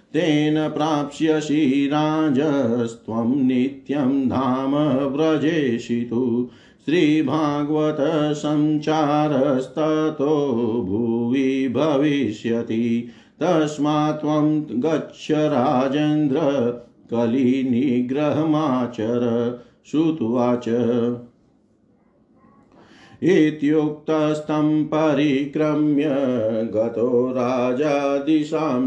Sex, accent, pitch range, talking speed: male, native, 120-150 Hz, 35 wpm